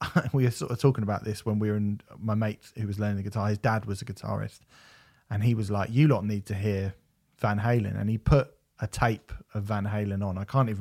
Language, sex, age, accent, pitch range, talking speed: English, male, 30-49, British, 105-125 Hz, 255 wpm